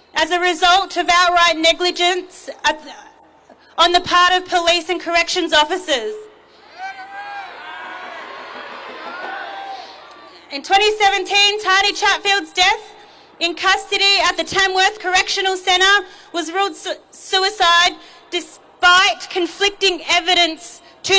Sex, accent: female, Australian